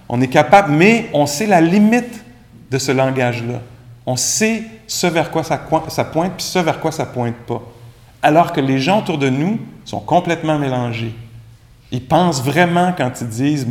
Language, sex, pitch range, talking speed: English, male, 125-170 Hz, 185 wpm